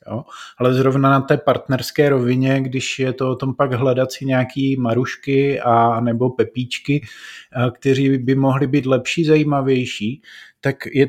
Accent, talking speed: native, 150 wpm